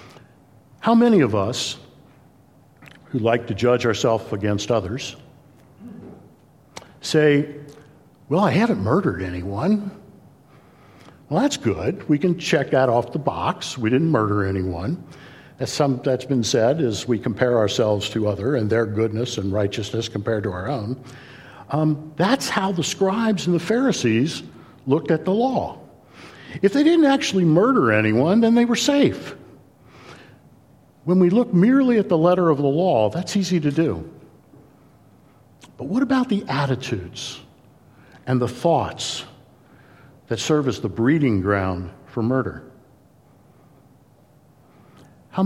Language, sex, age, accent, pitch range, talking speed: English, male, 60-79, American, 115-165 Hz, 135 wpm